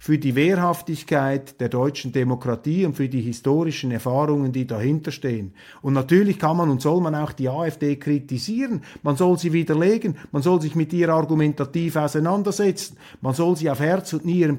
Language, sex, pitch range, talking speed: German, male, 145-195 Hz, 175 wpm